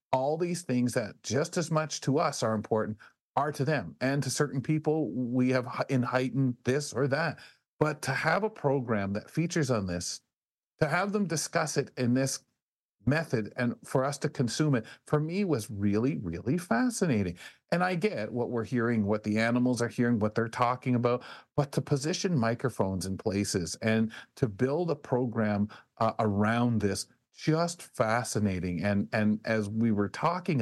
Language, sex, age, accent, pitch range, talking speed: English, male, 40-59, American, 115-150 Hz, 180 wpm